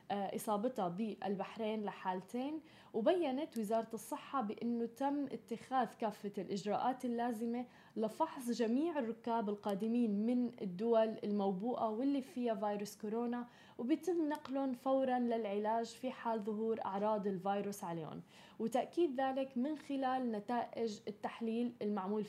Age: 10-29